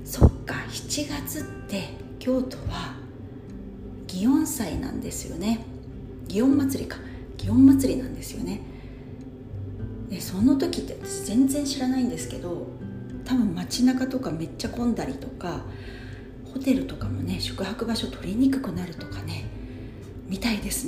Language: Japanese